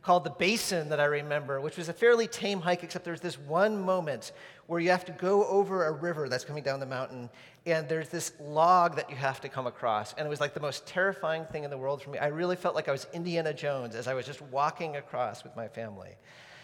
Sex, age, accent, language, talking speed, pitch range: male, 40-59, American, English, 250 wpm, 145-185 Hz